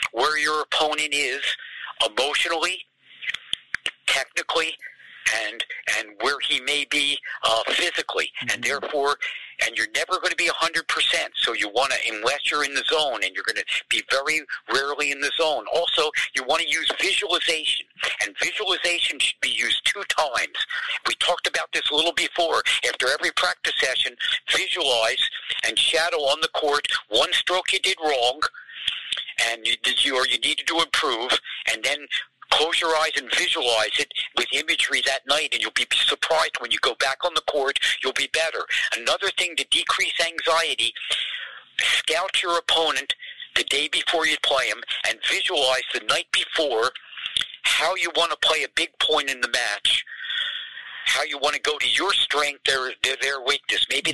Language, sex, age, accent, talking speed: English, male, 50-69, American, 170 wpm